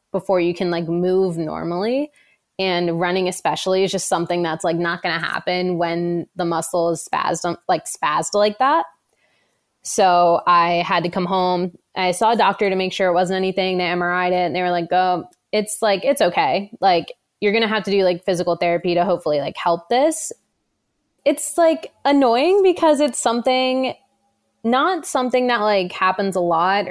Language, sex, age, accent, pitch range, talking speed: English, female, 20-39, American, 175-210 Hz, 185 wpm